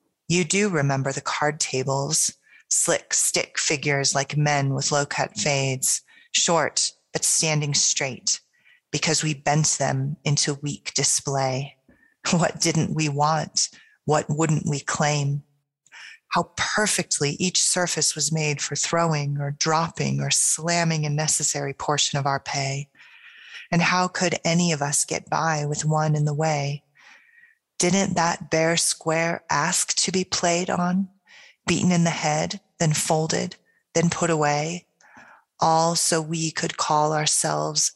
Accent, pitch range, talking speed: American, 140-165 Hz, 140 wpm